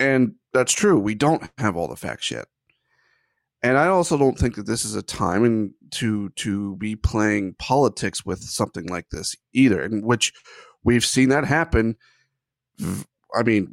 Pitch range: 110-135 Hz